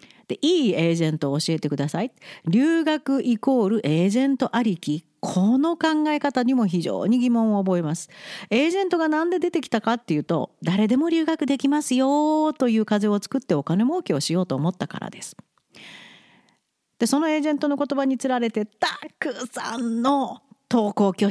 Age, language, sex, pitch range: 40-59, Japanese, female, 170-255 Hz